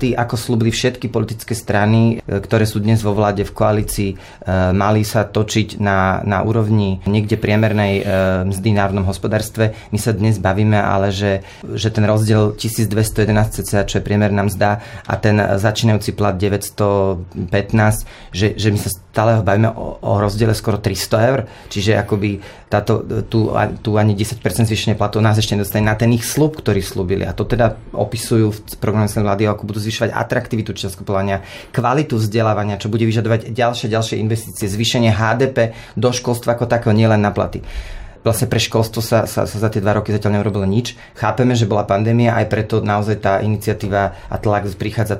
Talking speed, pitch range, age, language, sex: 165 wpm, 100-115 Hz, 30-49, Slovak, male